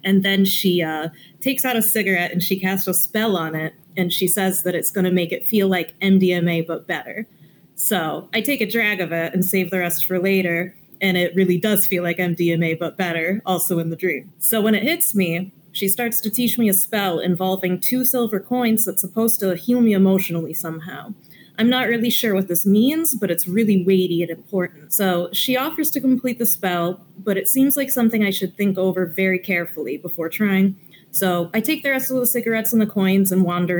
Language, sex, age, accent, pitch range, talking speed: English, female, 30-49, American, 175-225 Hz, 220 wpm